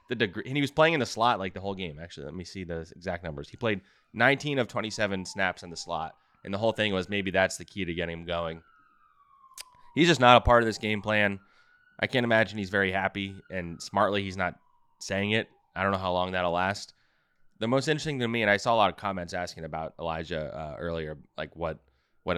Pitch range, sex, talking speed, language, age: 85-110 Hz, male, 245 wpm, English, 20-39